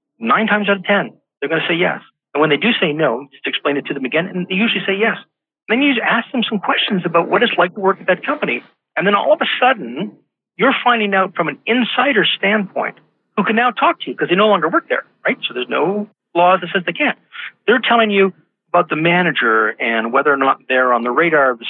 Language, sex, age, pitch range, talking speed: English, male, 50-69, 165-230 Hz, 260 wpm